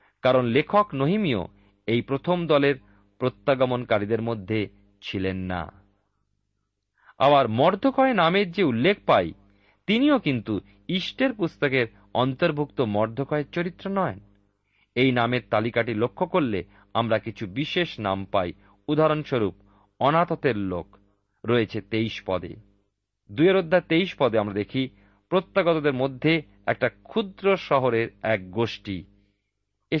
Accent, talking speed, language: native, 105 wpm, Bengali